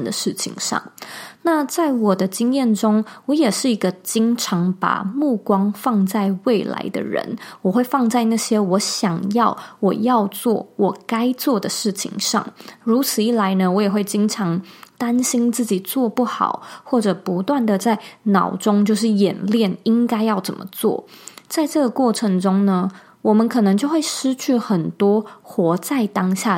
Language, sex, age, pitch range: Chinese, female, 20-39, 190-240 Hz